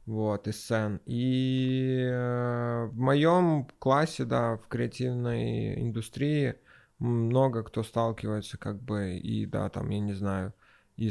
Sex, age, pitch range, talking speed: male, 20-39, 110-140 Hz, 125 wpm